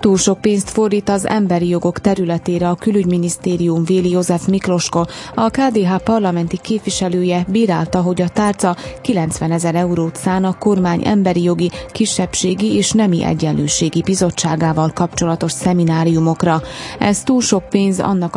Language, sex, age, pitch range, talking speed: Slovak, female, 30-49, 165-195 Hz, 135 wpm